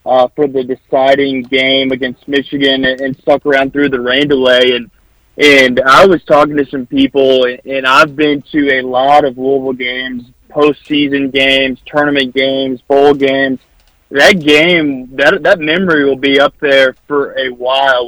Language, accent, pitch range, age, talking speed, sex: English, American, 135-150 Hz, 20-39, 170 wpm, male